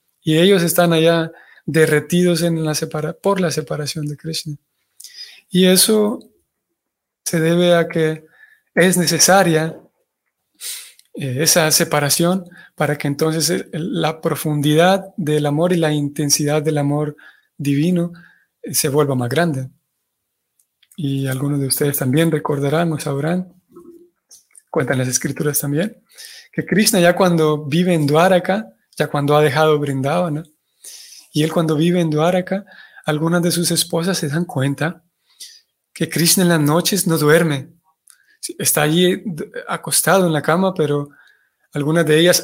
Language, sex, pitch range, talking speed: Spanish, male, 150-180 Hz, 135 wpm